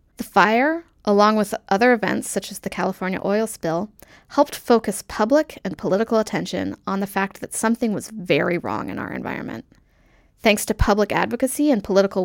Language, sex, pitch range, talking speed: English, female, 195-250 Hz, 170 wpm